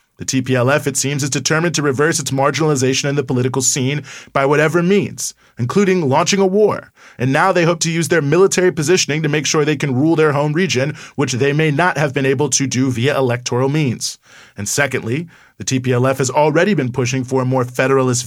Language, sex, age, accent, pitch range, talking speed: English, male, 30-49, American, 125-150 Hz, 205 wpm